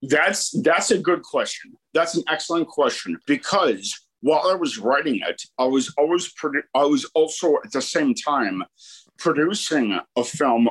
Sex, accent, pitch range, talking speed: male, American, 145-185 Hz, 165 wpm